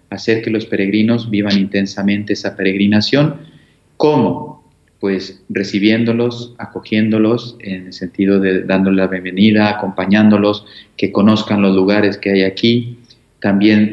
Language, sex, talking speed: Spanish, male, 120 wpm